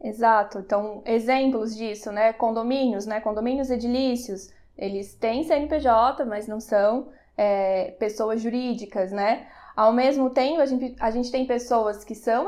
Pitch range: 210-265 Hz